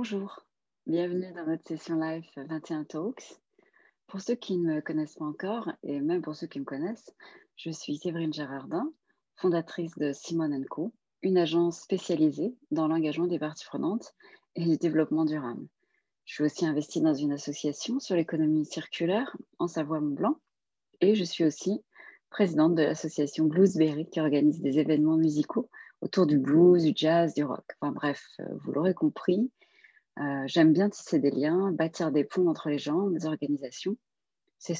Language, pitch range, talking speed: French, 155-200 Hz, 165 wpm